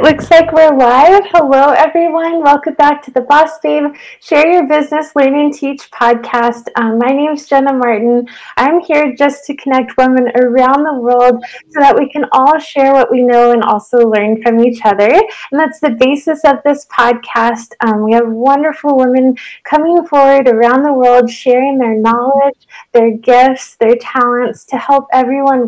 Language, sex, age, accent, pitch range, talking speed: English, female, 10-29, American, 245-300 Hz, 175 wpm